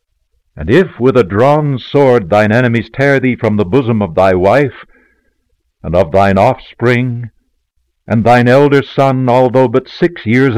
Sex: male